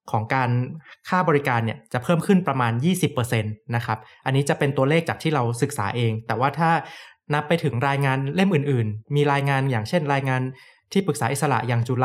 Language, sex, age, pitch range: Thai, male, 20-39, 125-155 Hz